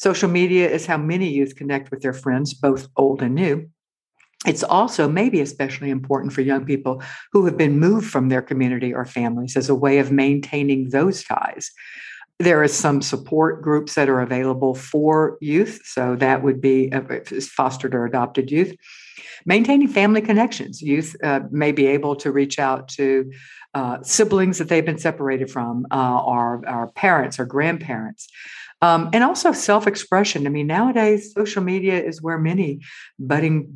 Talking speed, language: 165 wpm, English